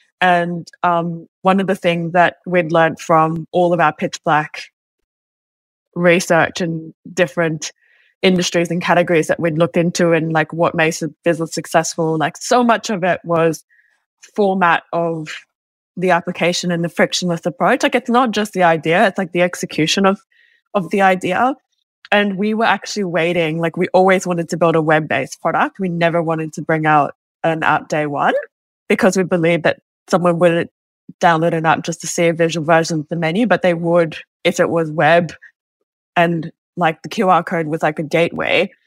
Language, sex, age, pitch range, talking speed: English, female, 20-39, 165-185 Hz, 180 wpm